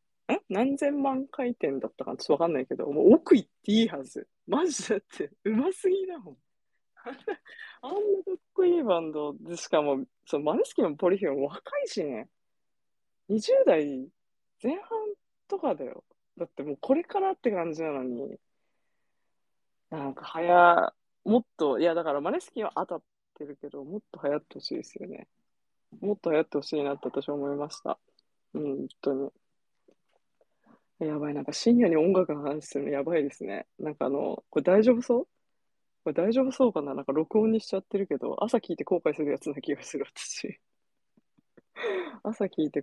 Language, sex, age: Japanese, female, 20-39